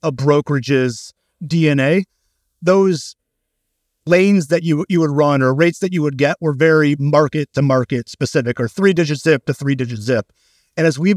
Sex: male